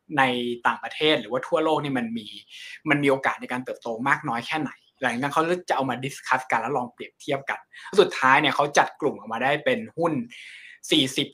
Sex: male